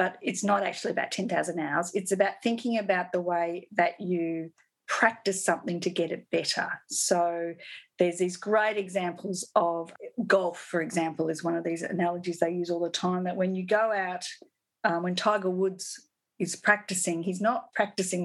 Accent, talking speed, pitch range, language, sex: Australian, 180 wpm, 175-210 Hz, English, female